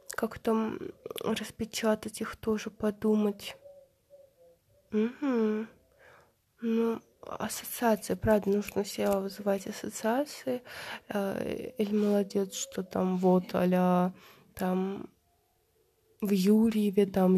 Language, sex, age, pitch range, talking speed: Russian, female, 20-39, 190-230 Hz, 85 wpm